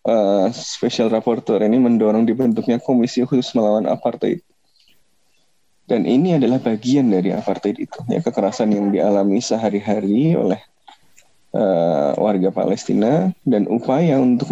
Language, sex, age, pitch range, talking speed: Indonesian, male, 20-39, 100-130 Hz, 120 wpm